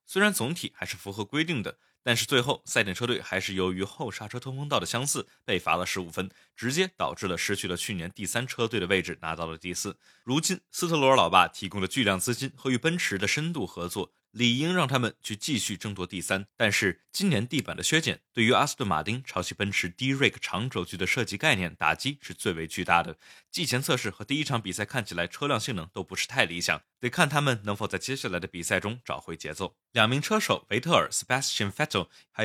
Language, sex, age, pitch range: Chinese, male, 20-39, 95-125 Hz